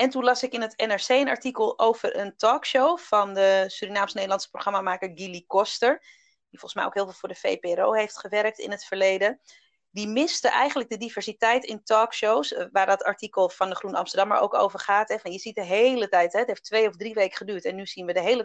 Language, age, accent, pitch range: Dutch, 30-49, Dutch, 190-240 Hz